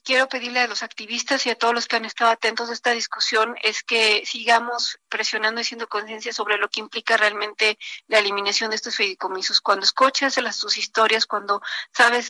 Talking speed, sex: 190 wpm, female